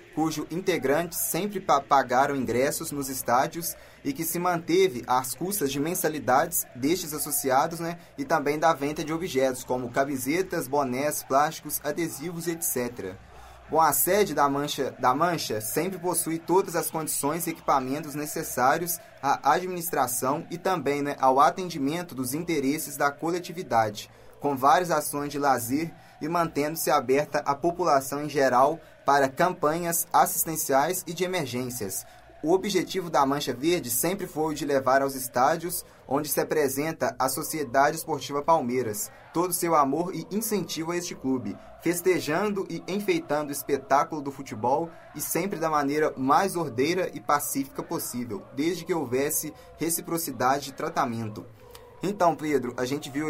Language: Portuguese